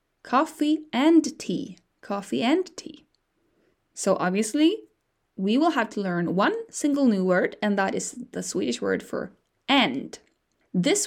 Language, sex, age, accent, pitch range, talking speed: English, female, 20-39, Norwegian, 200-305 Hz, 140 wpm